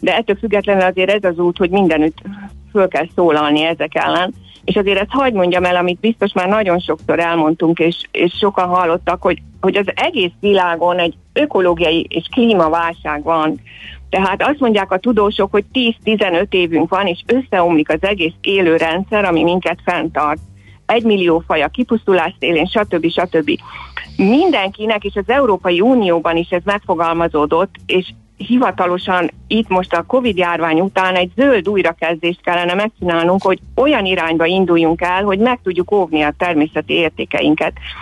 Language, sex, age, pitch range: Hungarian, female, 50-69, 165-200 Hz